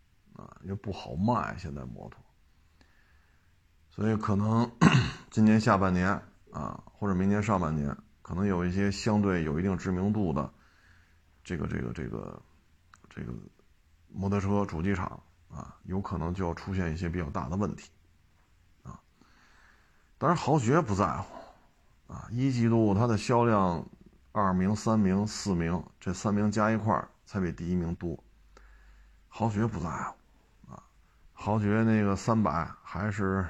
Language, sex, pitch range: Chinese, male, 85-105 Hz